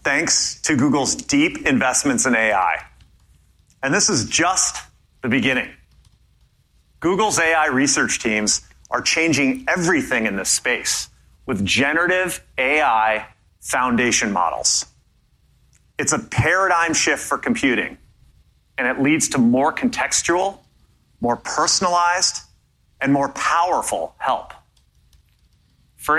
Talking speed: 110 wpm